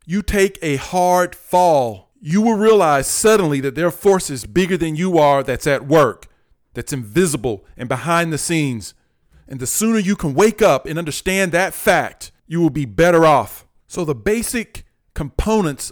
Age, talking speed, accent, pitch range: 40-59, 175 wpm, American, 135-180 Hz